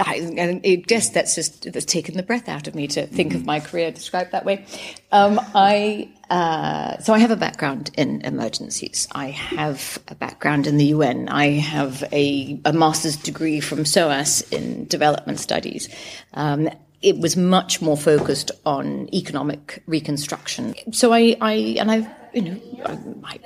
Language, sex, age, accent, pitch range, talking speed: English, female, 40-59, British, 145-195 Hz, 165 wpm